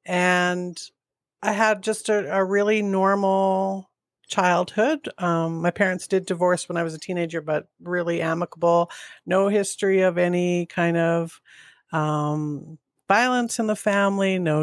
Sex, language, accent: female, English, American